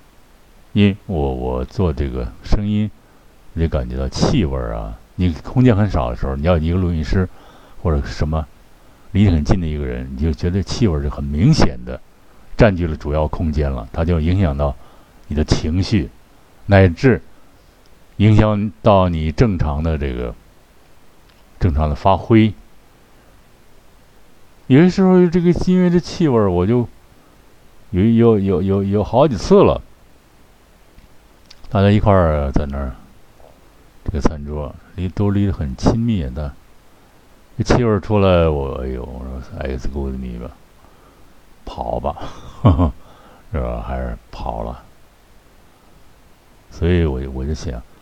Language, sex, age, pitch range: Chinese, male, 50-69, 70-100 Hz